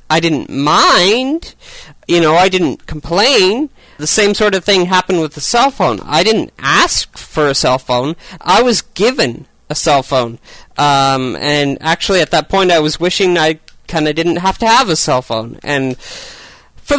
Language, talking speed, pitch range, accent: English, 185 wpm, 140-180 Hz, American